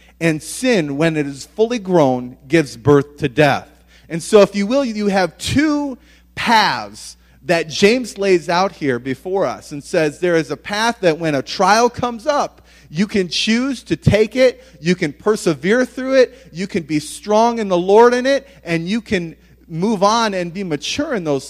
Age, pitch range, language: 30-49, 145-200 Hz, English